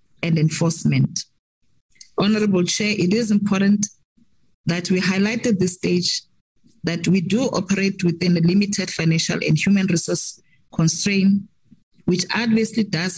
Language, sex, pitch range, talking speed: English, female, 165-200 Hz, 125 wpm